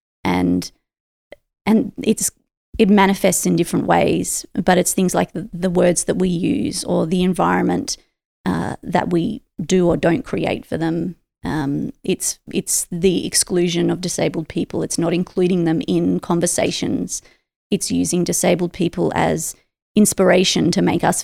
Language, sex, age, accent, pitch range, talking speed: English, female, 30-49, Australian, 170-195 Hz, 150 wpm